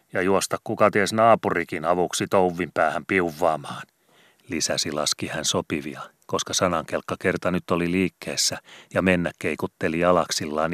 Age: 30-49